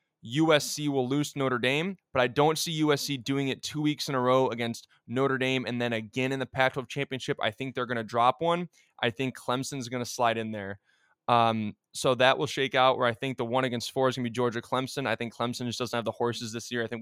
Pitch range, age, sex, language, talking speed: 115-135 Hz, 20-39, male, English, 255 wpm